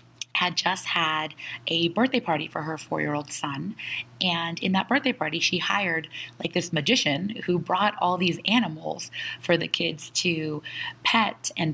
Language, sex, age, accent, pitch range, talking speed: English, female, 20-39, American, 160-195 Hz, 160 wpm